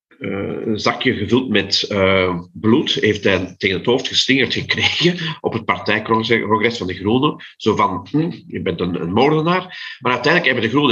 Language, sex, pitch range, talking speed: Dutch, male, 110-150 Hz, 180 wpm